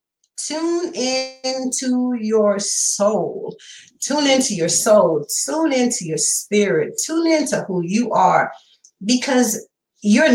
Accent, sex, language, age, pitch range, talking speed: American, female, English, 40-59, 170-250 Hz, 110 wpm